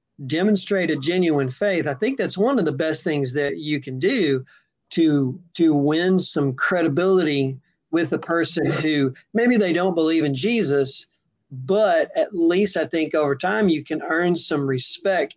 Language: English